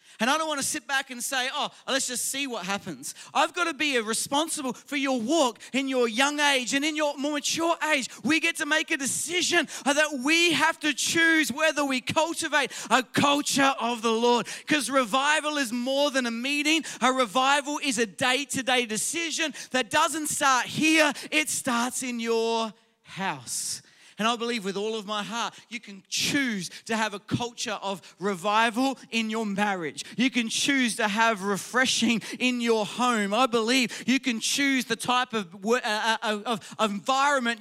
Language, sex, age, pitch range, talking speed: English, male, 30-49, 230-285 Hz, 180 wpm